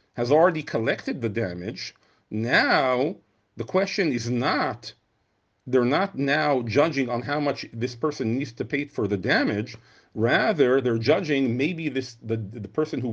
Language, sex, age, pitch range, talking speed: English, male, 40-59, 115-155 Hz, 155 wpm